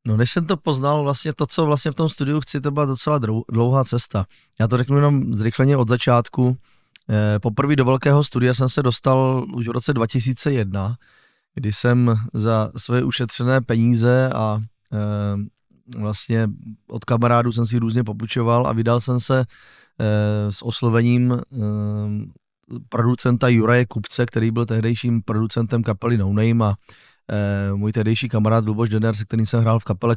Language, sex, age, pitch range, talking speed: Czech, male, 20-39, 110-130 Hz, 165 wpm